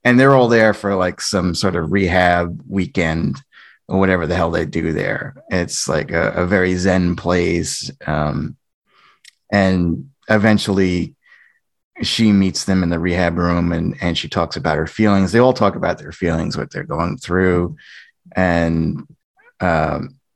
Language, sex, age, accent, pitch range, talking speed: English, male, 30-49, American, 85-105 Hz, 160 wpm